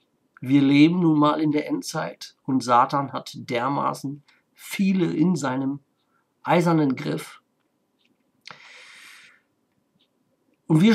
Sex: male